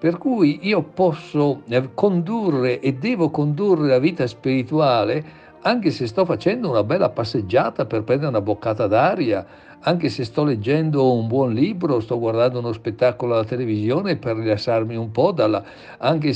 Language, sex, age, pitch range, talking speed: Italian, male, 60-79, 125-165 Hz, 155 wpm